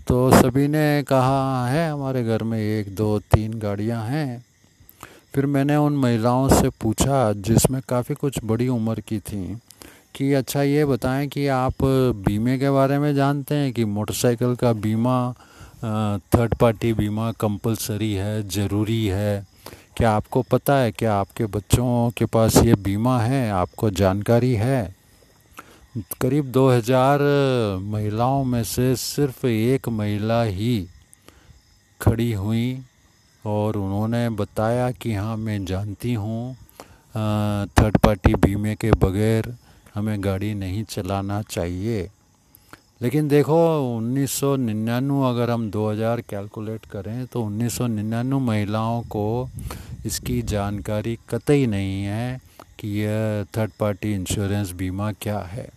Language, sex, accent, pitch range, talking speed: Hindi, male, native, 105-125 Hz, 130 wpm